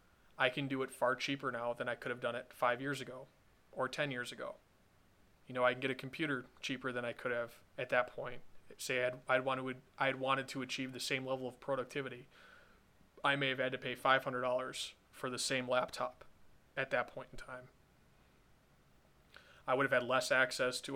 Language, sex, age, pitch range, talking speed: English, male, 20-39, 120-130 Hz, 200 wpm